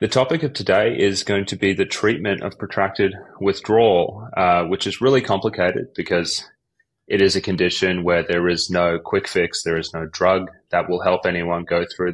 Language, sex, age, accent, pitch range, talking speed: English, male, 30-49, Australian, 85-95 Hz, 195 wpm